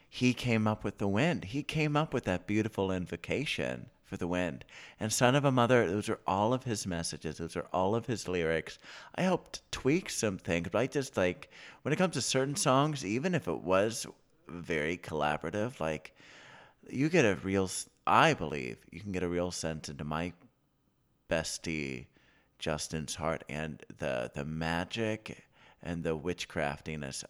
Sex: male